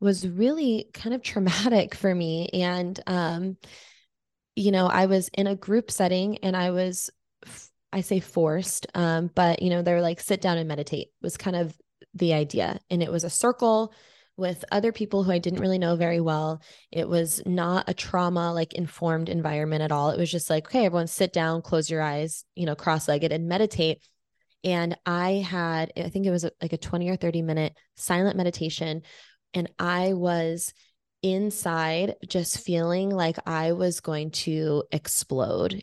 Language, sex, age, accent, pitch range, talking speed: English, female, 20-39, American, 165-190 Hz, 180 wpm